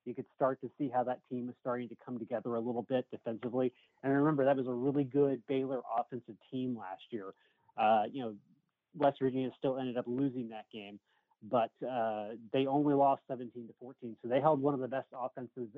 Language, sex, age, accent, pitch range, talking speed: English, male, 30-49, American, 120-135 Hz, 215 wpm